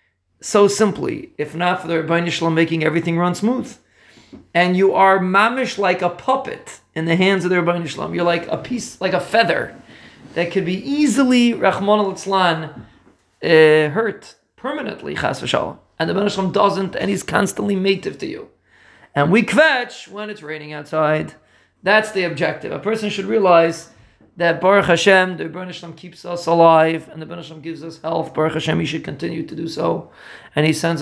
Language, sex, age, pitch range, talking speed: English, male, 40-59, 160-200 Hz, 170 wpm